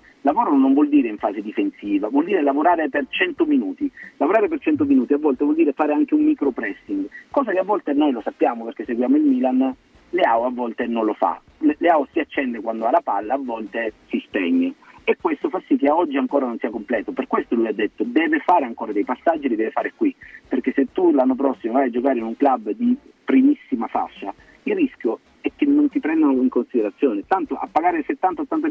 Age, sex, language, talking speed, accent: 40-59, male, Italian, 220 wpm, native